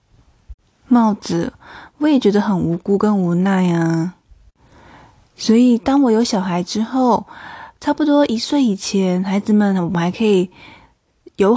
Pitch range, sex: 190-240 Hz, female